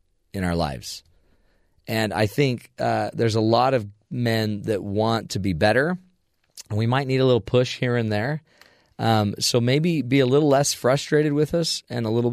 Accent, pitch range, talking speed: American, 100-130 Hz, 195 wpm